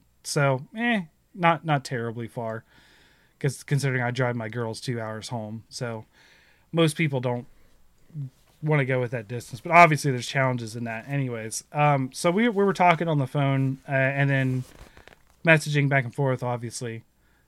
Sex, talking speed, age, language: male, 170 wpm, 20-39, English